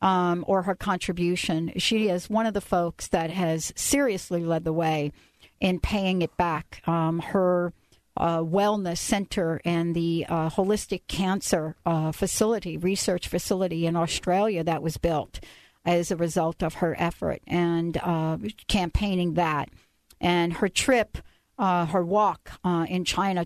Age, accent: 60-79, American